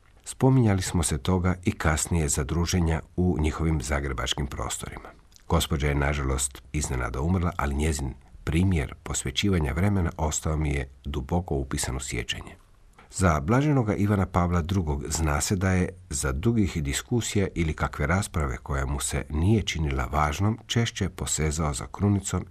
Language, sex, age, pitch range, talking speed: Croatian, male, 50-69, 70-95 Hz, 140 wpm